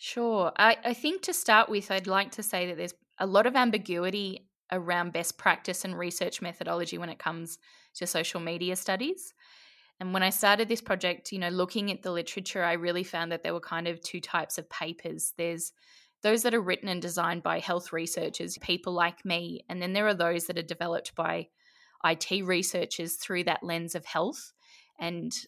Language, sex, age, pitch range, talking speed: English, female, 10-29, 170-195 Hz, 200 wpm